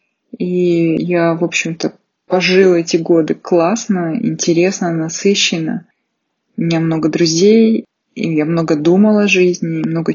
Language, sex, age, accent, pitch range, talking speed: Russian, female, 20-39, native, 165-205 Hz, 125 wpm